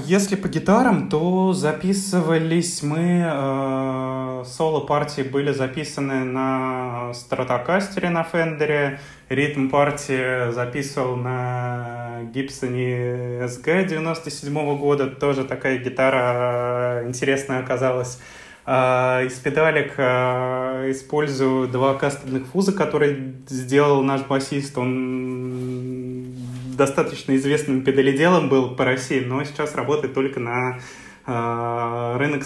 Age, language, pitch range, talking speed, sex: 20-39, Russian, 125-145 Hz, 95 wpm, male